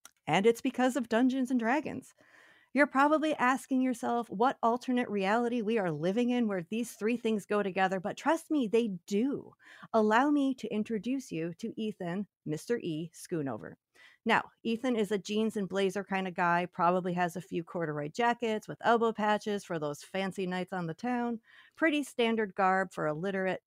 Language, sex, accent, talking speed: English, female, American, 180 wpm